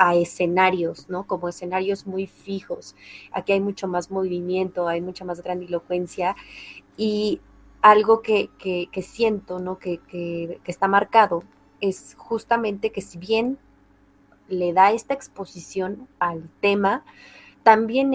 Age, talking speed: 20-39, 130 wpm